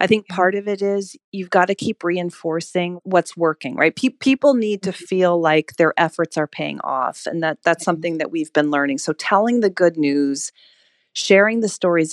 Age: 40-59